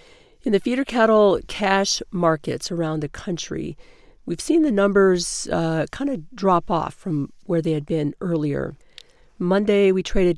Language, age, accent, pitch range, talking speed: English, 50-69, American, 160-195 Hz, 155 wpm